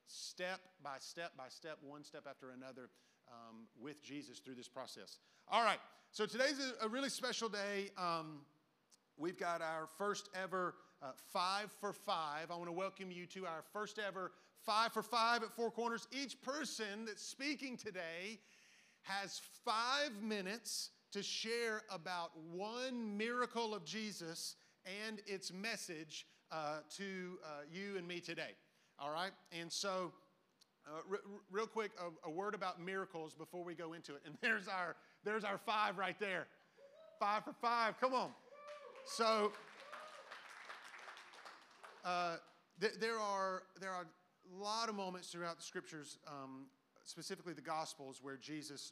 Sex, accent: male, American